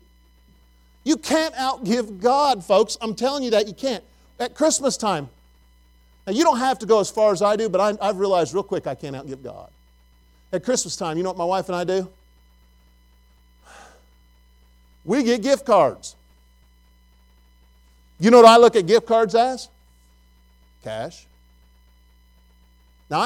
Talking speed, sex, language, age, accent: 155 wpm, male, English, 50-69, American